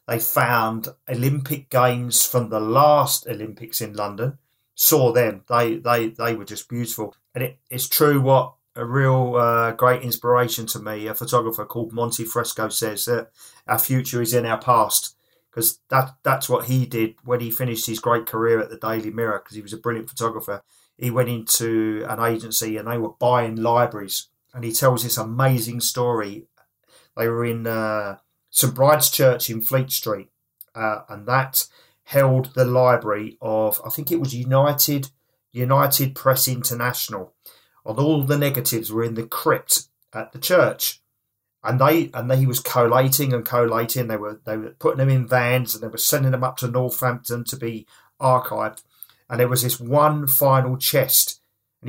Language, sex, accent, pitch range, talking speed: English, male, British, 115-130 Hz, 180 wpm